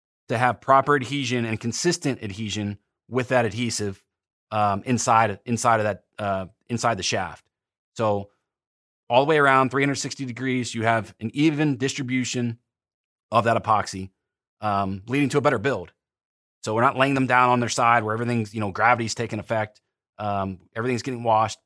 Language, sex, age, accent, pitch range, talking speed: English, male, 30-49, American, 105-130 Hz, 165 wpm